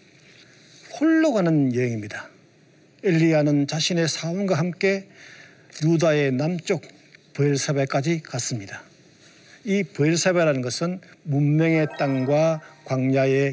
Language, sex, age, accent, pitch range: Korean, male, 50-69, native, 135-170 Hz